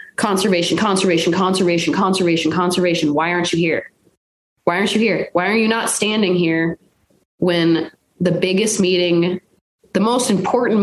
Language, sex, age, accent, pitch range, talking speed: English, female, 20-39, American, 175-225 Hz, 145 wpm